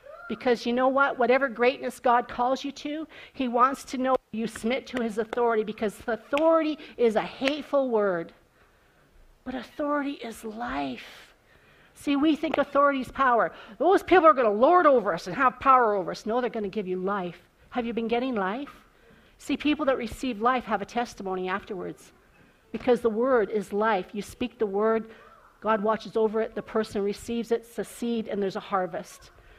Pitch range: 220-290 Hz